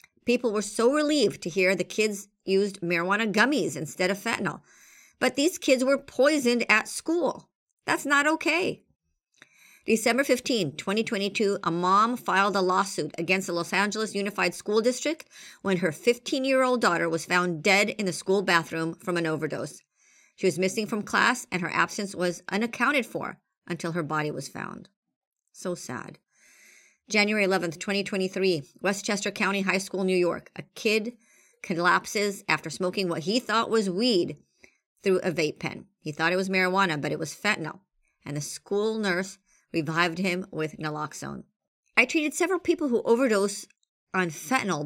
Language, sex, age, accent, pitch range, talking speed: English, male, 50-69, American, 180-235 Hz, 160 wpm